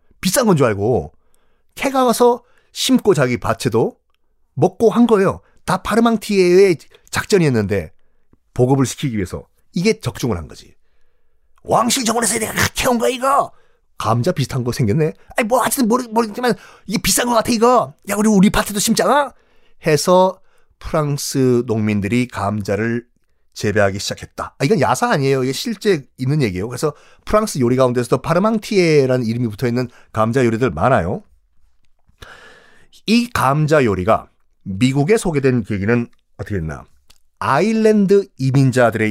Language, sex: Korean, male